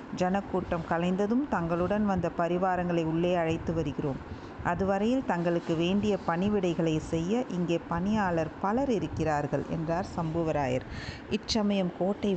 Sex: female